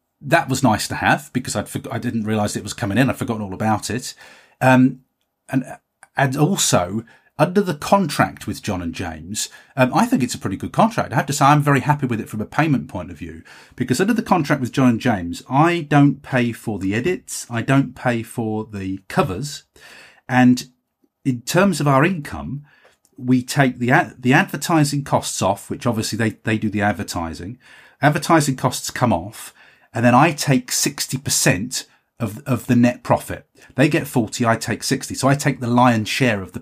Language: English